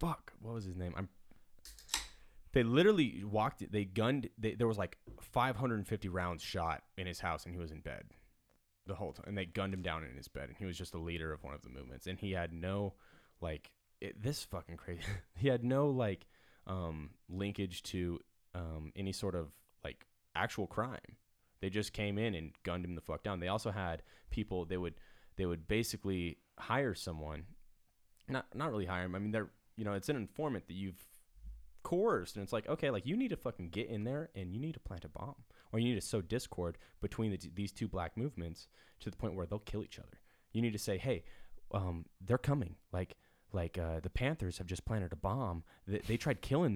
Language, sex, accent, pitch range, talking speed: English, male, American, 85-110 Hz, 215 wpm